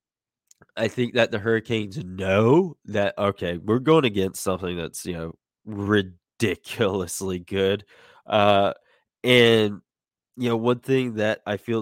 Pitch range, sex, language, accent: 100-120 Hz, male, English, American